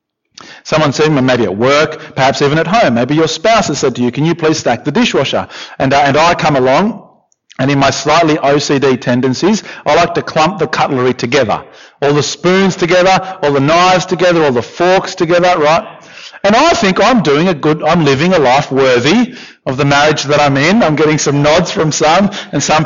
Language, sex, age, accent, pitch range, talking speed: English, male, 40-59, Australian, 140-195 Hz, 210 wpm